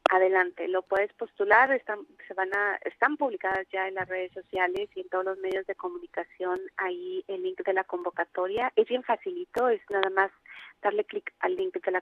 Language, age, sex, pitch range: Spanish, 30-49, female, 185-225 Hz